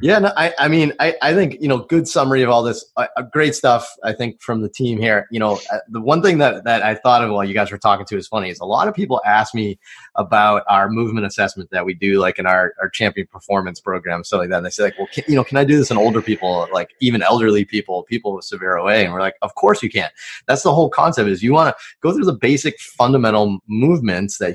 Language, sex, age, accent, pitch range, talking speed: English, male, 30-49, American, 100-135 Hz, 275 wpm